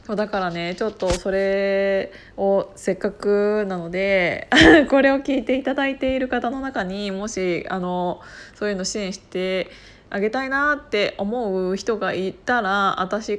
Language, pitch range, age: Japanese, 180-230 Hz, 20-39